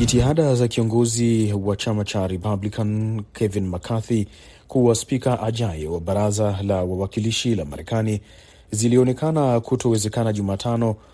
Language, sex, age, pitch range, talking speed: Swahili, male, 40-59, 100-120 Hz, 115 wpm